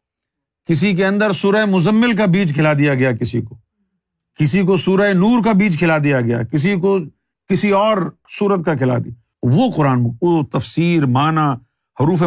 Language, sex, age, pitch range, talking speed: Urdu, male, 50-69, 125-175 Hz, 175 wpm